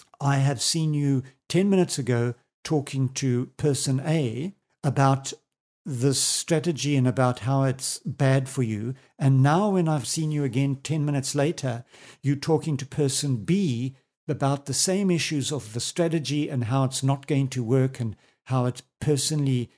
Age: 60-79